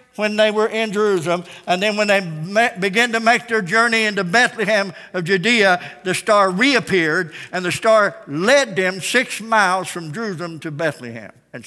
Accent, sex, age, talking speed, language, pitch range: American, male, 60-79, 170 wpm, English, 180-240 Hz